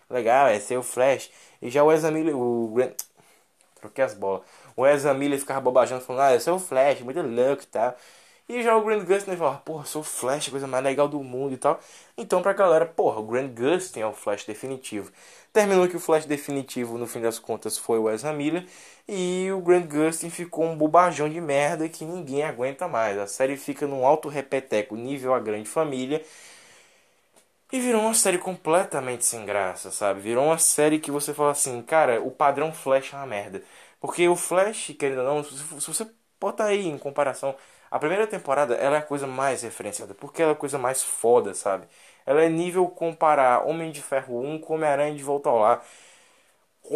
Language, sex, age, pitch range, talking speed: Portuguese, male, 20-39, 130-165 Hz, 210 wpm